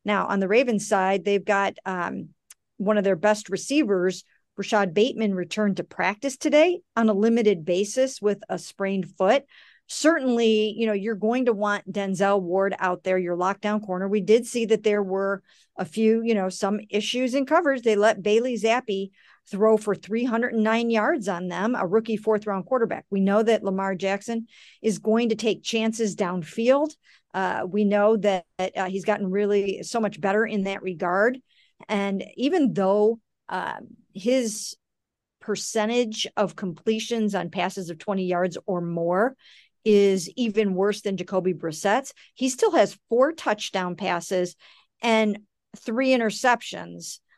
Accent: American